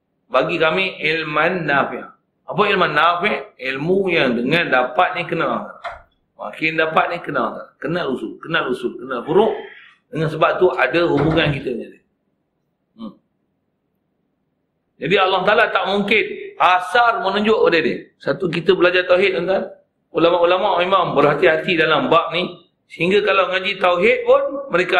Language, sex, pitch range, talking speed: Malay, male, 165-245 Hz, 130 wpm